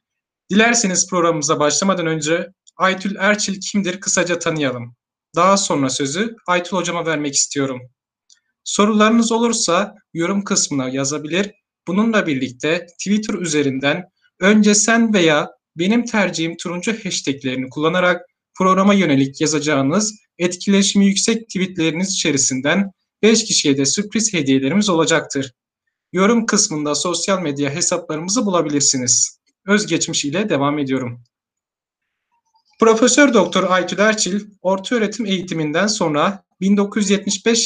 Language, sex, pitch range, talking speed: Turkish, male, 155-210 Hz, 100 wpm